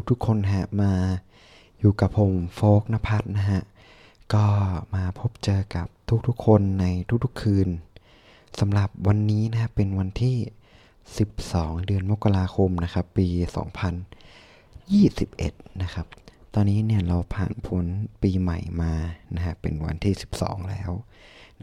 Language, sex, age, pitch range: Thai, male, 20-39, 95-110 Hz